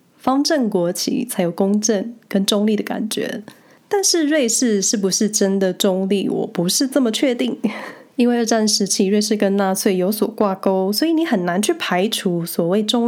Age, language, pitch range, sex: 20-39, Chinese, 190-235 Hz, female